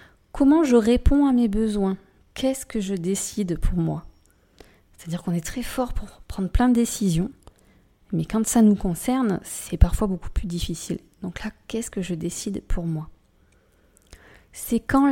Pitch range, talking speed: 155-205 Hz, 165 wpm